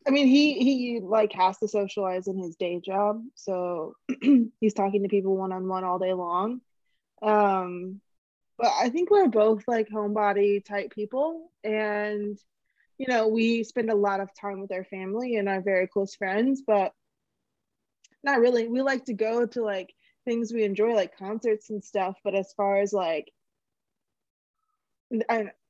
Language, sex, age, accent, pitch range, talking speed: English, female, 20-39, American, 195-230 Hz, 170 wpm